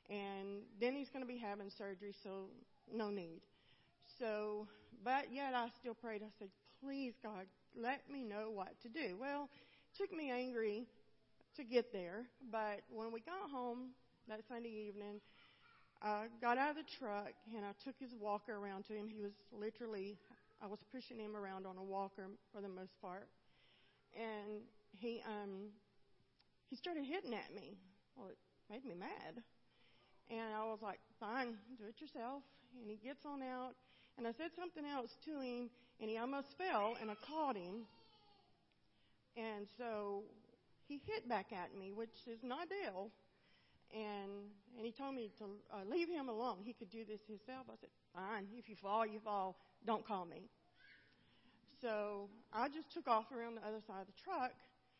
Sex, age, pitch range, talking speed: female, 40-59, 205-250 Hz, 175 wpm